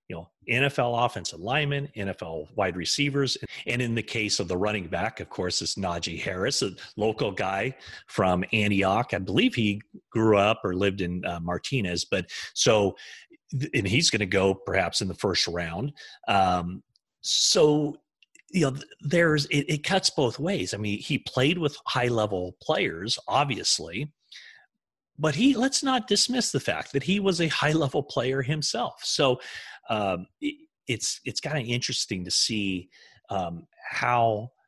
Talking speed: 165 wpm